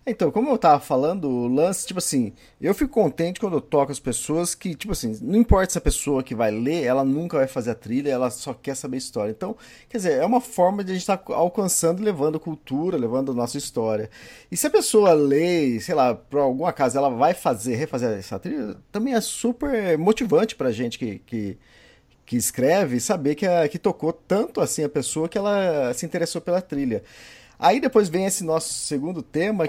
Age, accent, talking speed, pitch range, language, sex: 40-59, Brazilian, 215 wpm, 130-185 Hz, Portuguese, male